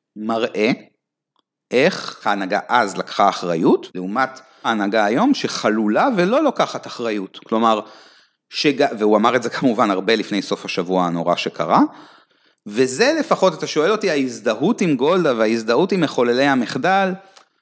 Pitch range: 105-160 Hz